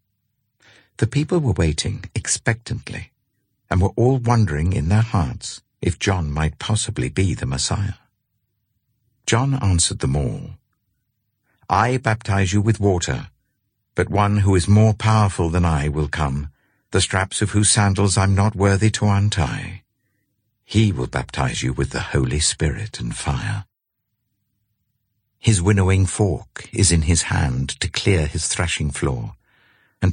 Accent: British